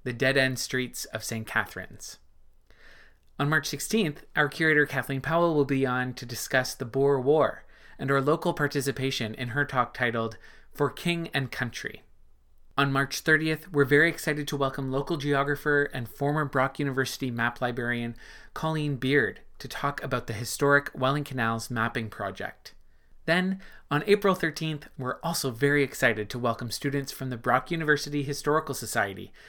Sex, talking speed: male, 155 wpm